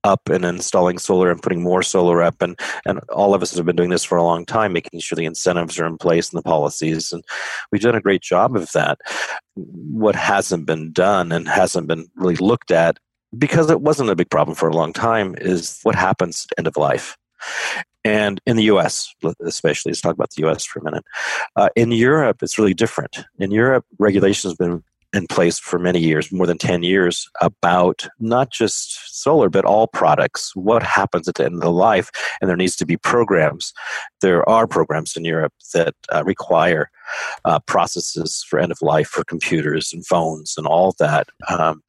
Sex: male